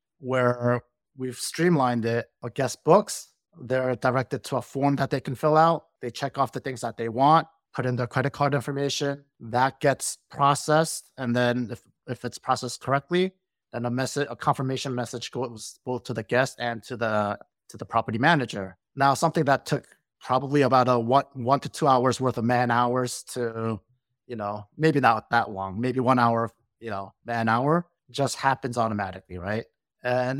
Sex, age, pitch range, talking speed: male, 30-49, 120-145 Hz, 190 wpm